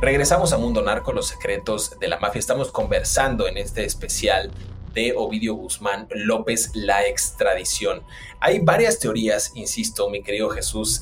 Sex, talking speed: male, 145 wpm